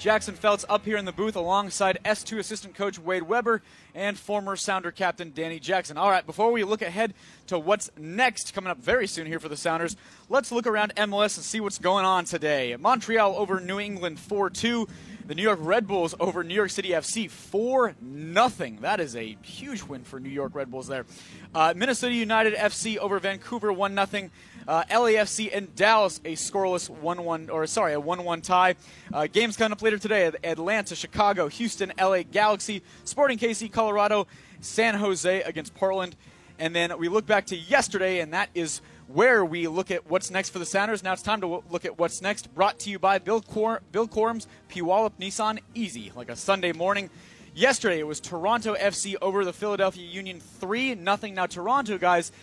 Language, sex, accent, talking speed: English, male, American, 190 wpm